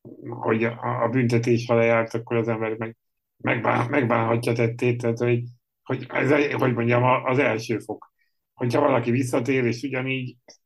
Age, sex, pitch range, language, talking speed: 70-89, male, 110-120 Hz, Hungarian, 145 wpm